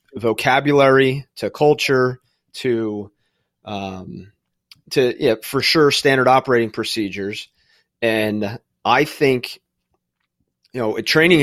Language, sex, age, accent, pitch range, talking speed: English, male, 30-49, American, 105-130 Hz, 95 wpm